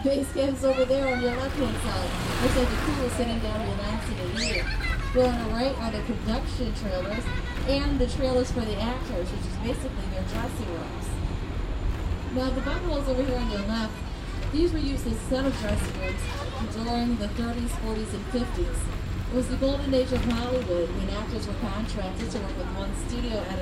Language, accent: English, American